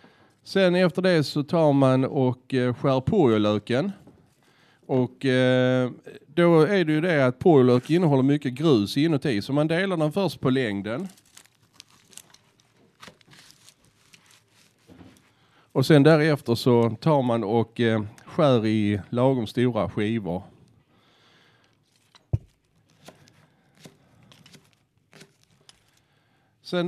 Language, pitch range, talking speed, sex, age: Swedish, 125-160 Hz, 90 wpm, male, 40-59